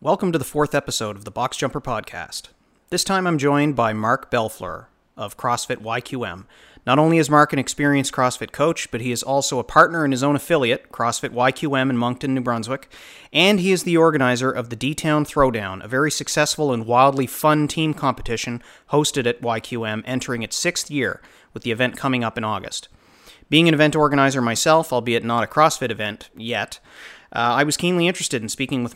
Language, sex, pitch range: English, male, 115-145 Hz